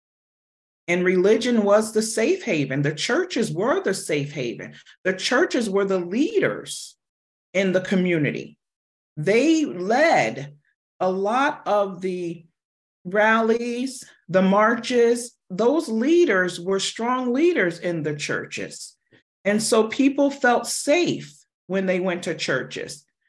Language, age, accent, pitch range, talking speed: English, 40-59, American, 155-225 Hz, 120 wpm